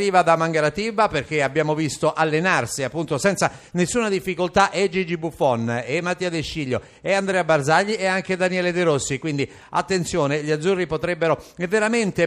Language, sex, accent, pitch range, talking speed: Italian, male, native, 150-185 Hz, 150 wpm